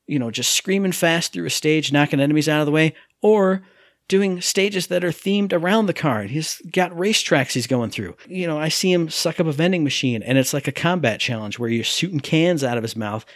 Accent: American